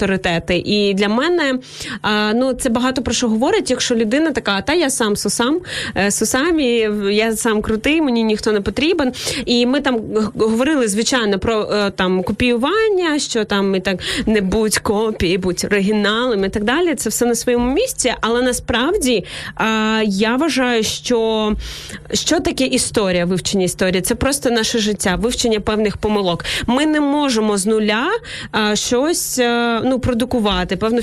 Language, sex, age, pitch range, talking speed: Ukrainian, female, 20-39, 215-260 Hz, 145 wpm